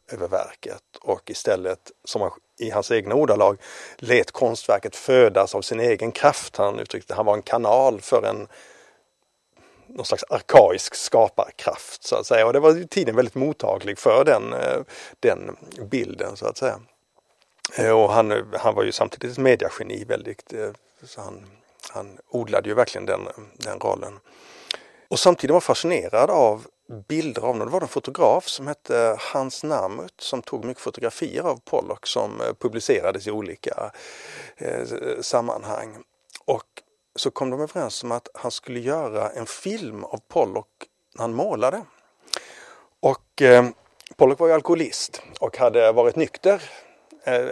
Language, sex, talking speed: Swedish, male, 150 wpm